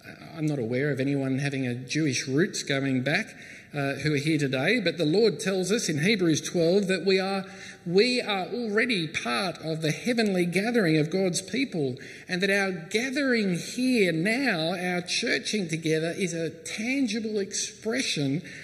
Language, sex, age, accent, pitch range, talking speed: English, male, 50-69, Australian, 140-210 Hz, 160 wpm